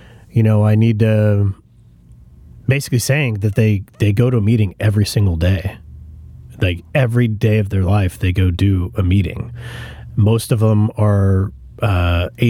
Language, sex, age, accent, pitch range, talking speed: English, male, 30-49, American, 105-120 Hz, 155 wpm